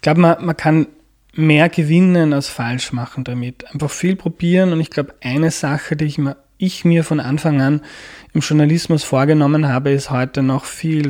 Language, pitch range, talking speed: German, 130-150 Hz, 185 wpm